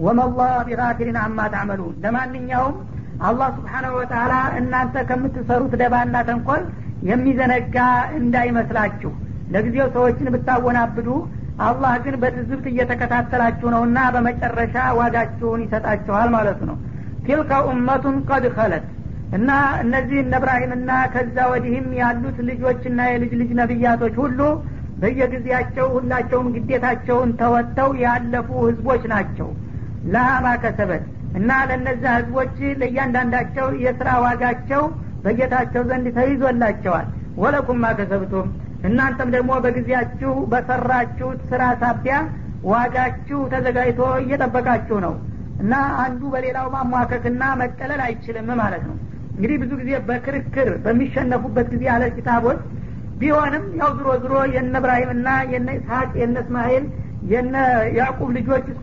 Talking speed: 100 wpm